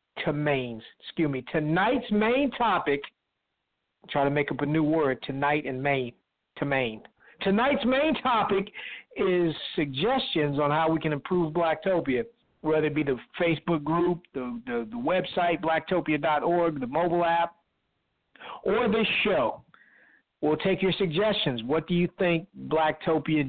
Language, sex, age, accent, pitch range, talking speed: English, male, 50-69, American, 150-205 Hz, 145 wpm